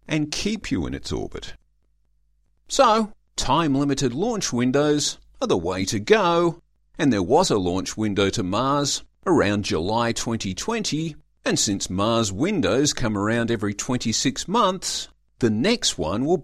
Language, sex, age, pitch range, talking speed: English, male, 50-69, 90-145 Hz, 140 wpm